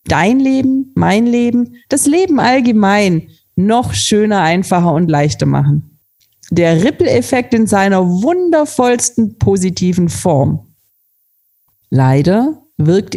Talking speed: 105 wpm